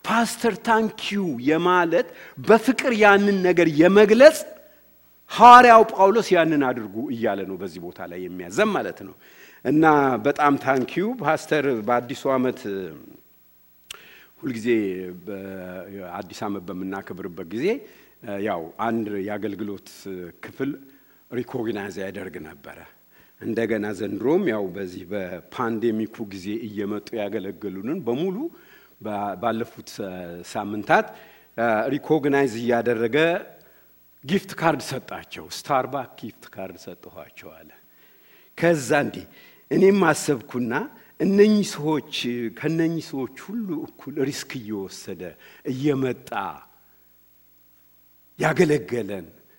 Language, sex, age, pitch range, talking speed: English, male, 60-79, 100-165 Hz, 75 wpm